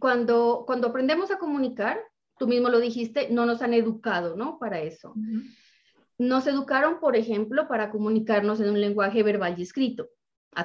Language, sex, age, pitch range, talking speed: Spanish, female, 30-49, 205-255 Hz, 165 wpm